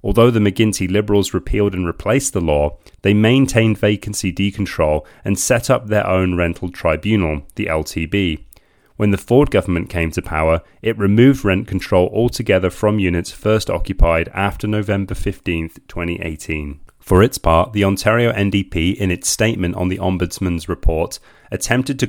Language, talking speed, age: English, 155 wpm, 30-49